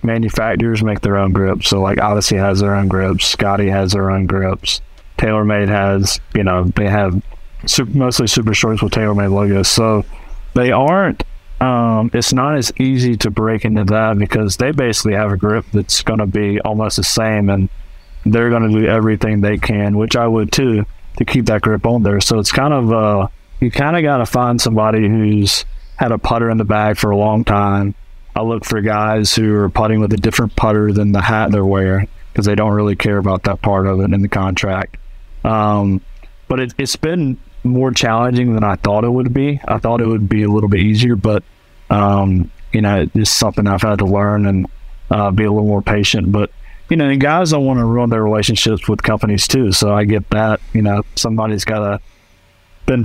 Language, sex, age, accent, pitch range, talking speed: English, male, 20-39, American, 100-115 Hz, 210 wpm